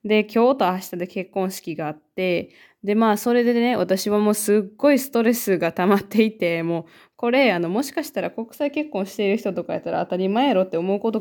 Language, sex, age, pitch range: Japanese, female, 20-39, 175-225 Hz